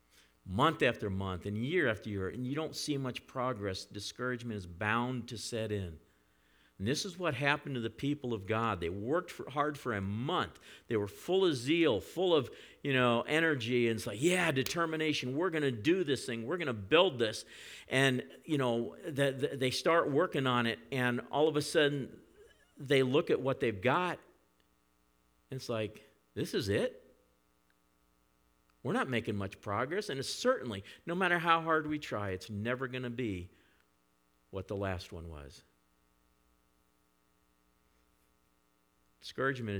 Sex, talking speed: male, 165 wpm